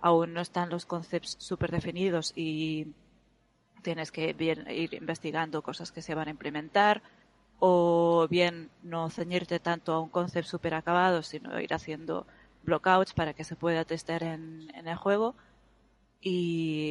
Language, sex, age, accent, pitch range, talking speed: Spanish, female, 20-39, Spanish, 160-175 Hz, 155 wpm